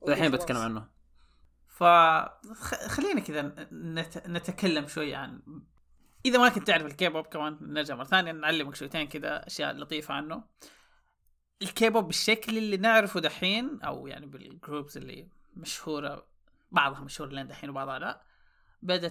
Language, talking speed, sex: Arabic, 115 wpm, male